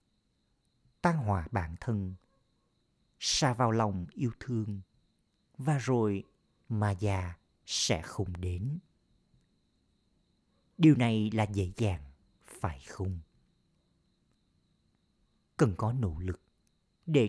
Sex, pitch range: male, 90-120 Hz